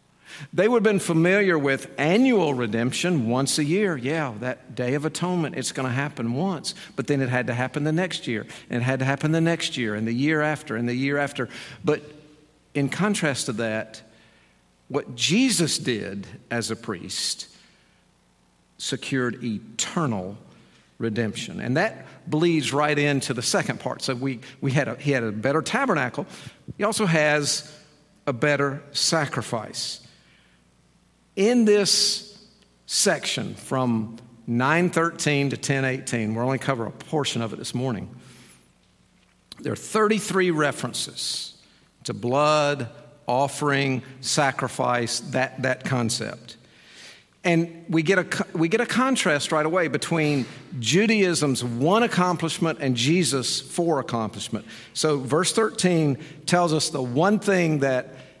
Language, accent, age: English, American, 50-69